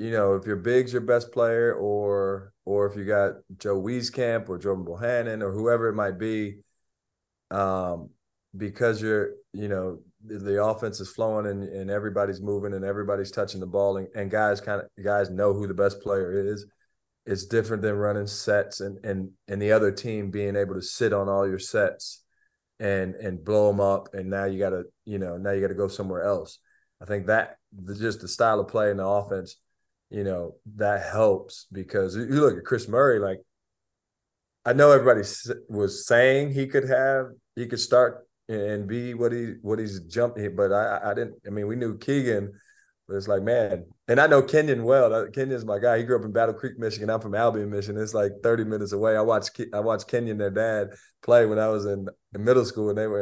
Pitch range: 100-115 Hz